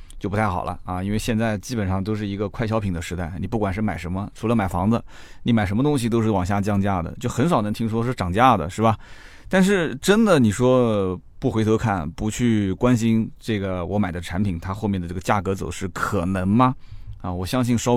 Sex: male